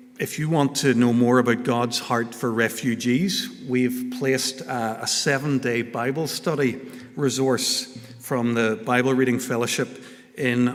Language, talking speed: English, 140 wpm